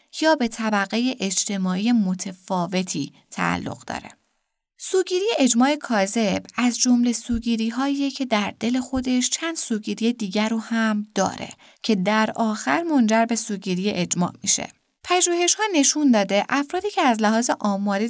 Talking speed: 130 wpm